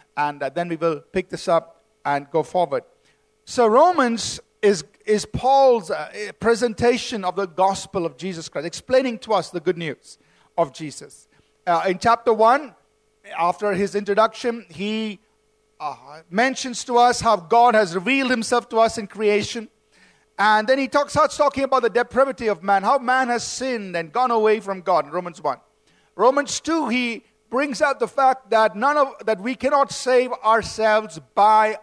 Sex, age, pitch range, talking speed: male, 50-69, 185-245 Hz, 165 wpm